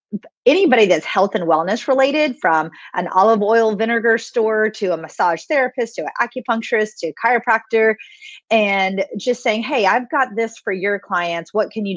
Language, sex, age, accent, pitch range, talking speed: English, female, 30-49, American, 185-250 Hz, 175 wpm